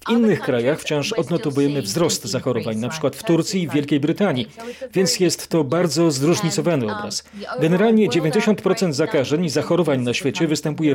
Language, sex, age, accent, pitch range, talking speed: Polish, male, 40-59, native, 135-175 Hz, 150 wpm